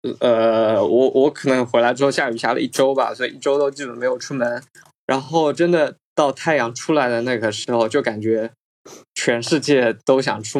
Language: Chinese